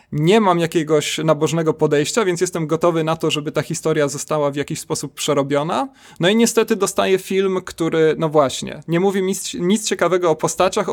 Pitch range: 150-185 Hz